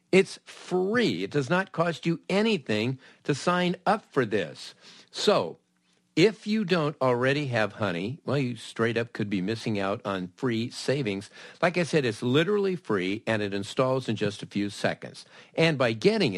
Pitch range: 110-160 Hz